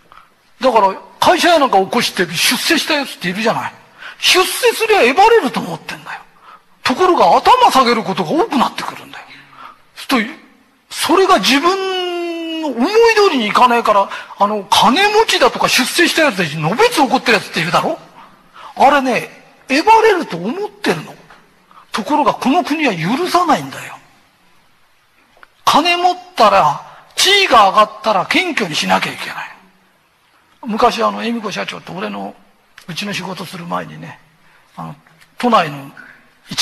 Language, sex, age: Japanese, male, 40-59